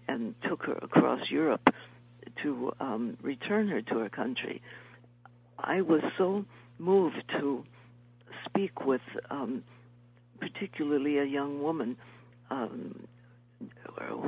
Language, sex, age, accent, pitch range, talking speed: English, female, 60-79, American, 120-150 Hz, 105 wpm